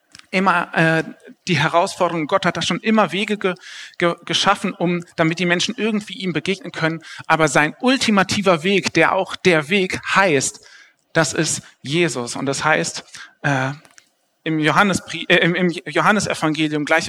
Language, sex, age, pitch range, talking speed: German, male, 40-59, 150-185 Hz, 155 wpm